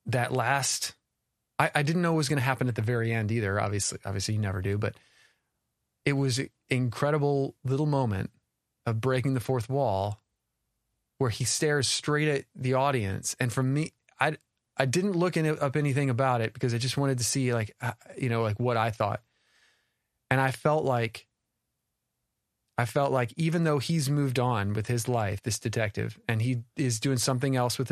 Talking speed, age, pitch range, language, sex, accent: 190 wpm, 30-49, 115-145 Hz, English, male, American